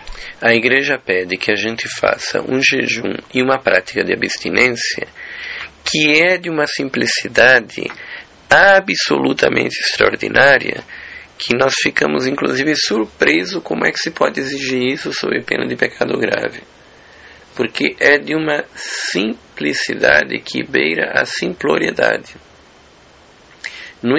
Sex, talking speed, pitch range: male, 120 wpm, 85-135 Hz